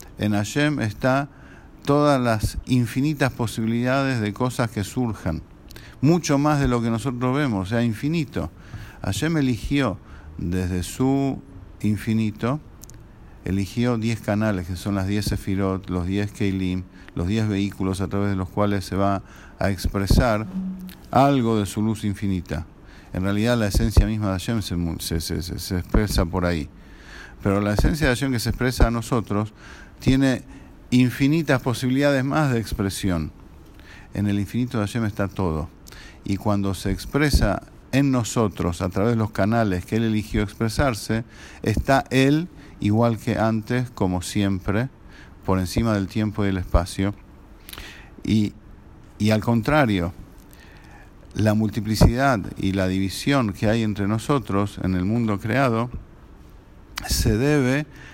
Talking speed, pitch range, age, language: 145 wpm, 95-125 Hz, 50-69, English